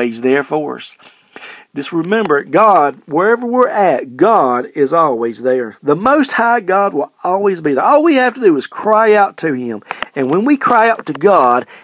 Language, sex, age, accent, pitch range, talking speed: English, male, 40-59, American, 140-205 Hz, 195 wpm